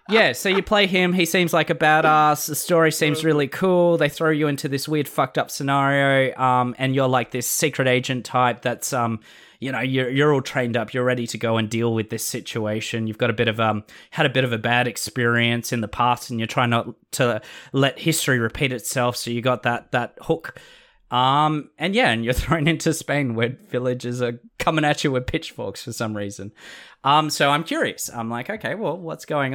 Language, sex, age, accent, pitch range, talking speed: English, male, 20-39, Australian, 120-155 Hz, 225 wpm